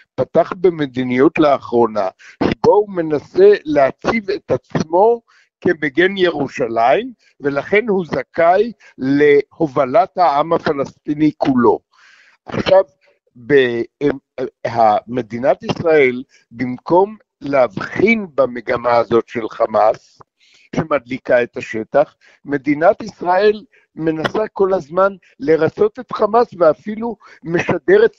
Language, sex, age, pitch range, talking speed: Hebrew, male, 60-79, 145-210 Hz, 85 wpm